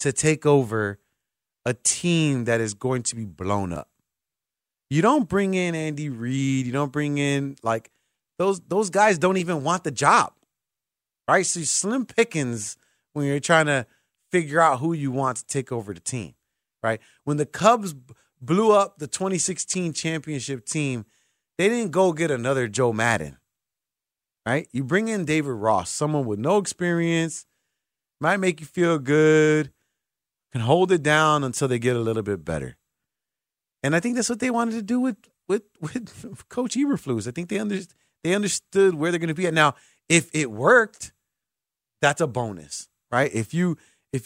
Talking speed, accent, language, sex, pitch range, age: 175 wpm, American, English, male, 130-185 Hz, 30-49